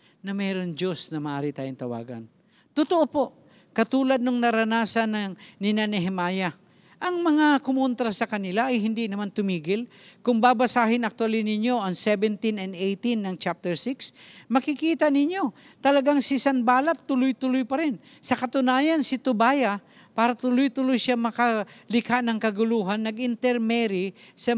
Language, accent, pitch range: English, Filipino, 185-245 Hz